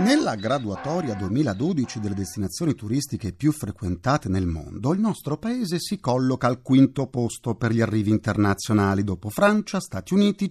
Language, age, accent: Italian, 40-59, native